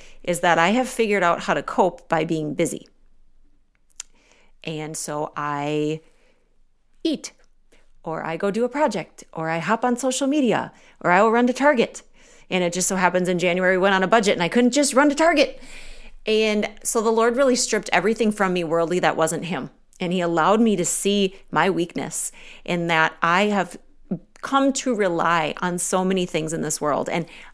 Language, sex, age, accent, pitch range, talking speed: English, female, 40-59, American, 165-215 Hz, 195 wpm